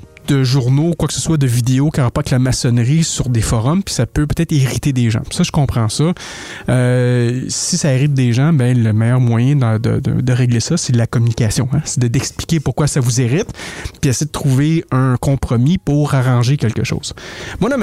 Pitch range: 120-150 Hz